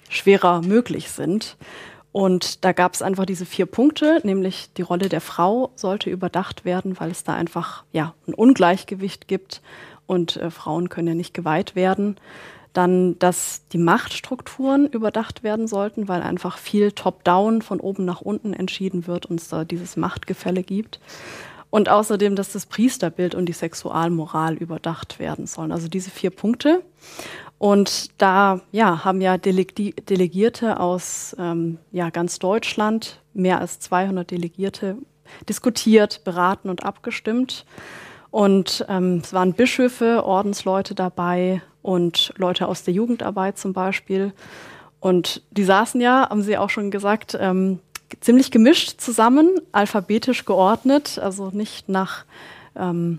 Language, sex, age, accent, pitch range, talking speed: German, female, 20-39, German, 180-210 Hz, 140 wpm